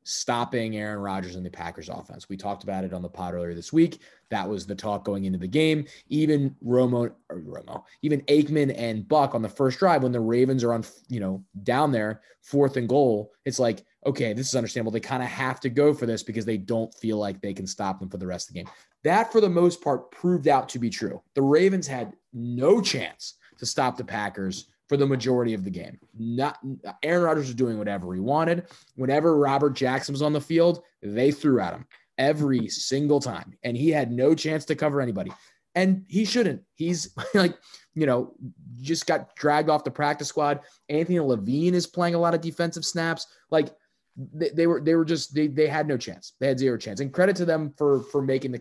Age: 20-39